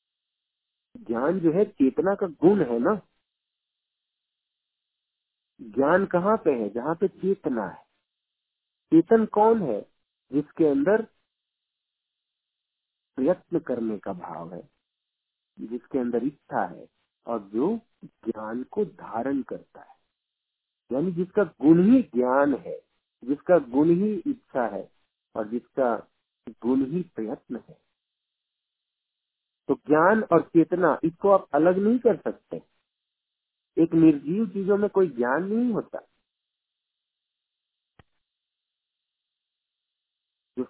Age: 50-69